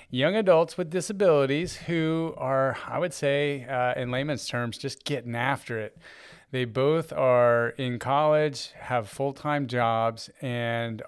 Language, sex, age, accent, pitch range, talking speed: English, male, 30-49, American, 120-140 Hz, 145 wpm